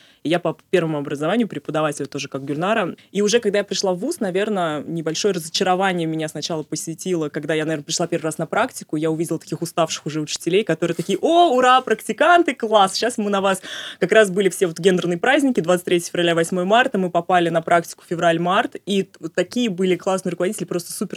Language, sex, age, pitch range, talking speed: Russian, female, 20-39, 165-200 Hz, 195 wpm